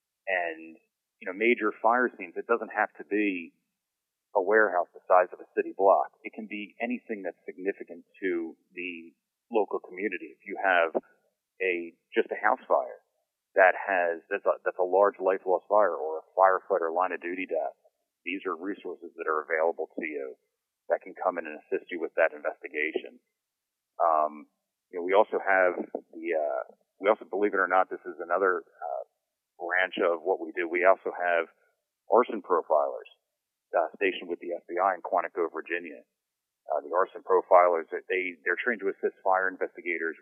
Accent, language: American, English